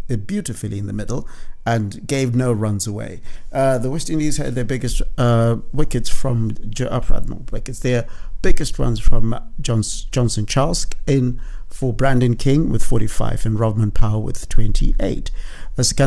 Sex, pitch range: male, 110-130 Hz